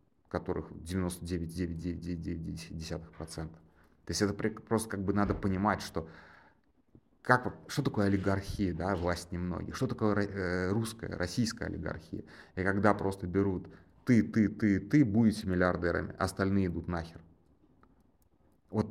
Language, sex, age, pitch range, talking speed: Russian, male, 30-49, 85-105 Hz, 115 wpm